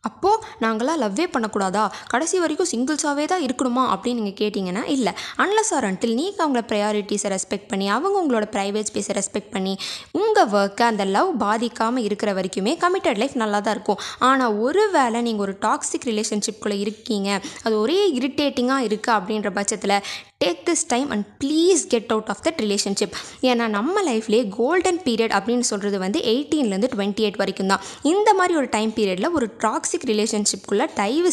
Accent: native